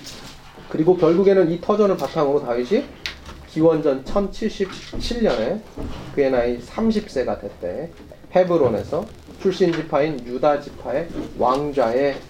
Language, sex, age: Korean, male, 30-49